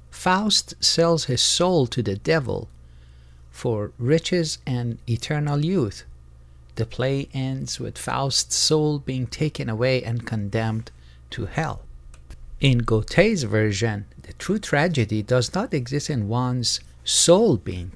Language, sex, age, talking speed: English, male, 60-79, 125 wpm